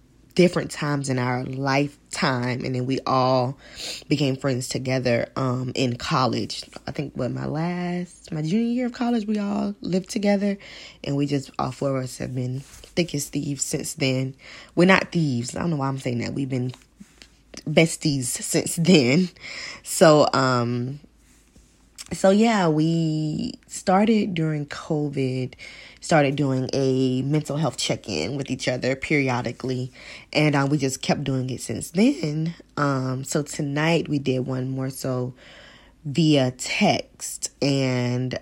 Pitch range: 130-160 Hz